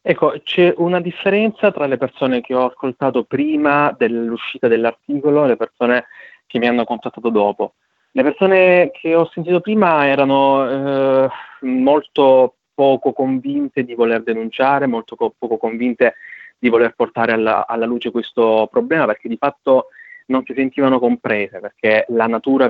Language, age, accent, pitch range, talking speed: Italian, 20-39, native, 115-155 Hz, 150 wpm